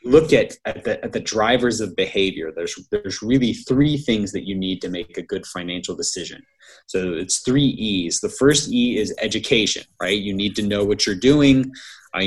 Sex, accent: male, American